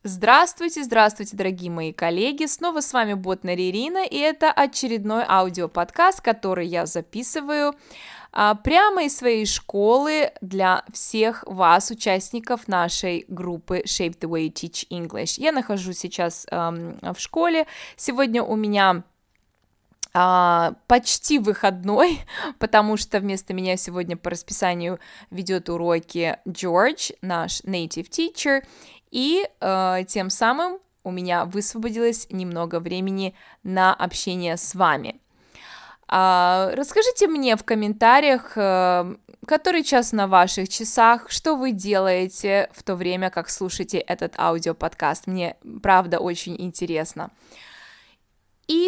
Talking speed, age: 120 wpm, 20-39